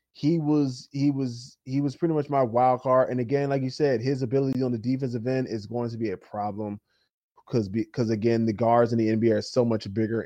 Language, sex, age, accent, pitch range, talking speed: English, male, 20-39, American, 110-130 Hz, 235 wpm